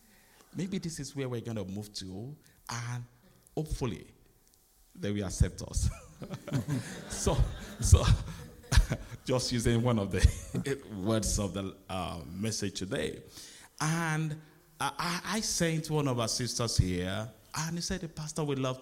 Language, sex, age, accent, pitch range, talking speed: English, male, 50-69, Nigerian, 100-135 Hz, 140 wpm